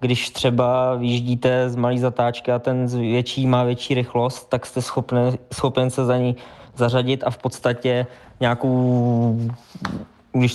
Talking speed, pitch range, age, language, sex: 135 wpm, 120-130 Hz, 20-39, Czech, male